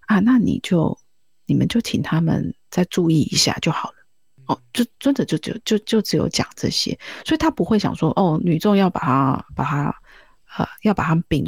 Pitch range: 165-235 Hz